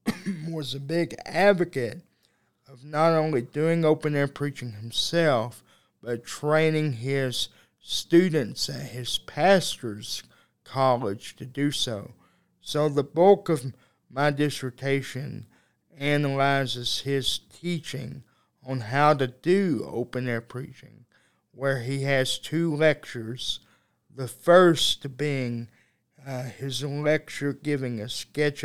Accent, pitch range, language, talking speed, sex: American, 120-150 Hz, English, 105 wpm, male